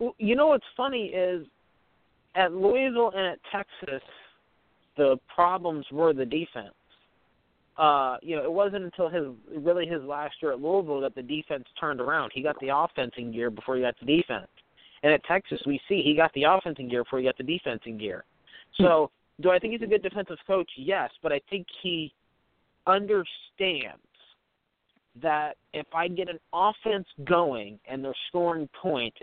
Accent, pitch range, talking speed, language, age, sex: American, 135-180 Hz, 175 wpm, English, 40-59, male